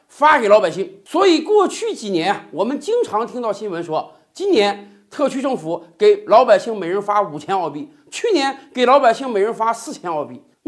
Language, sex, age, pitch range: Chinese, male, 50-69, 215-315 Hz